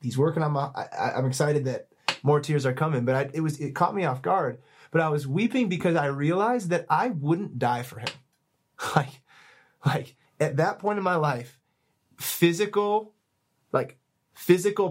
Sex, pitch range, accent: male, 135-170 Hz, American